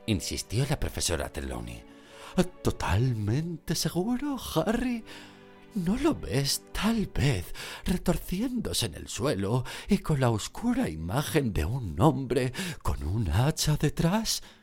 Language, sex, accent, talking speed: Spanish, male, Spanish, 115 wpm